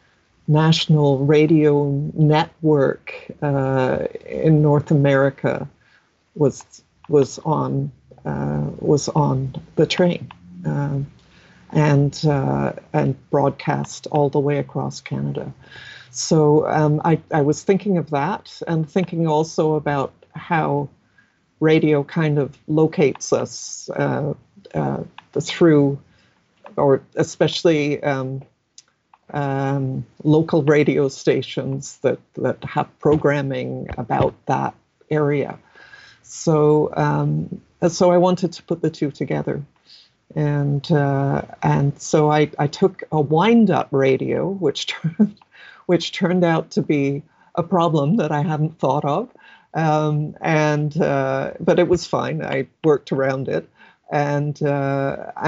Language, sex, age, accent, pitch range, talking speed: English, female, 50-69, American, 140-160 Hz, 115 wpm